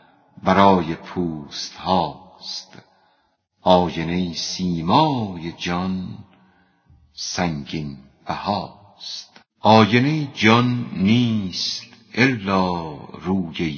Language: Persian